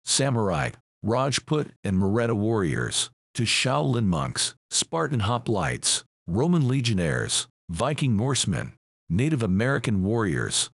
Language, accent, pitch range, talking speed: English, American, 105-135 Hz, 95 wpm